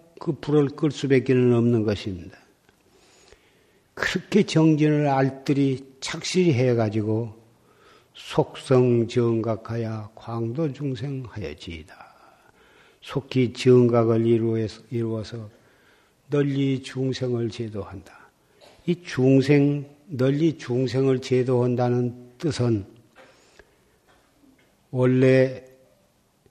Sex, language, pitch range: male, Korean, 120-140 Hz